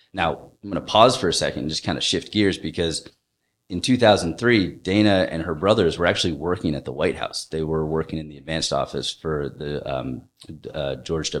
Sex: male